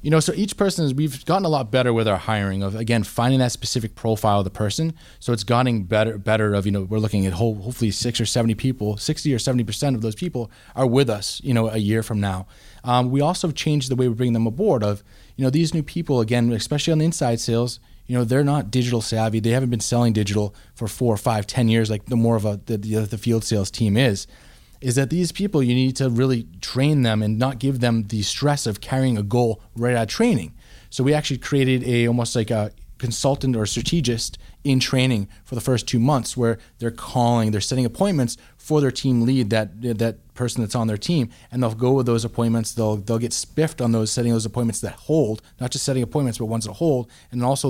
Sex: male